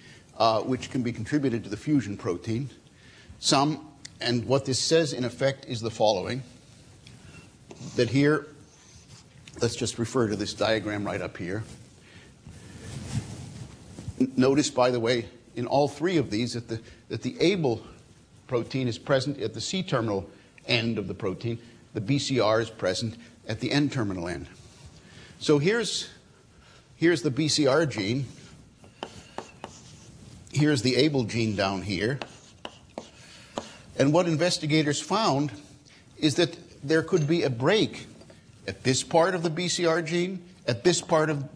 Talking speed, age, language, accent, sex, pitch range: 140 wpm, 50-69, English, American, male, 115-150 Hz